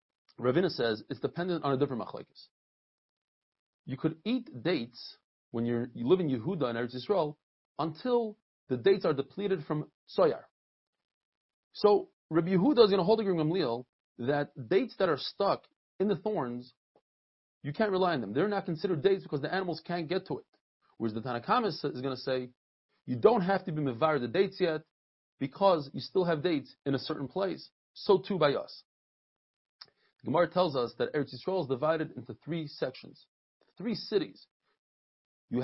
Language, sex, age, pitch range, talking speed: English, male, 30-49, 140-200 Hz, 175 wpm